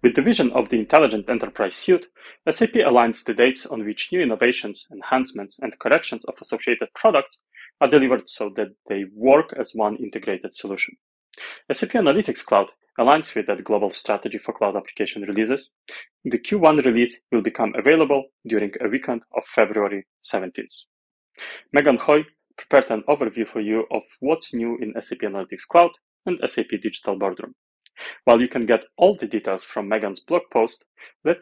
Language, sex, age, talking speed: German, male, 30-49, 165 wpm